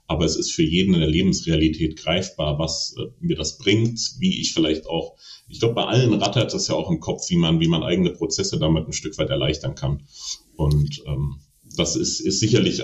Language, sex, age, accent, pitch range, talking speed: German, male, 30-49, German, 85-120 Hz, 210 wpm